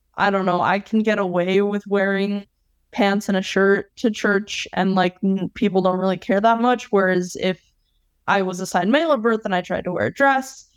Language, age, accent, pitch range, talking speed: English, 20-39, American, 180-205 Hz, 210 wpm